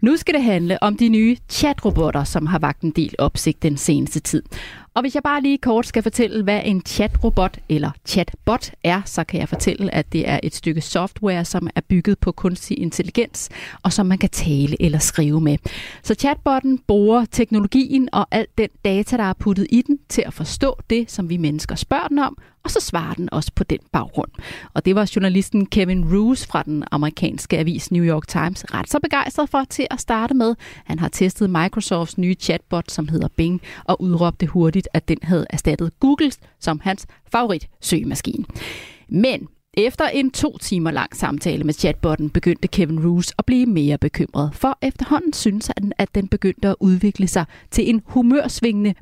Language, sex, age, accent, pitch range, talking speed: Danish, female, 30-49, native, 165-235 Hz, 195 wpm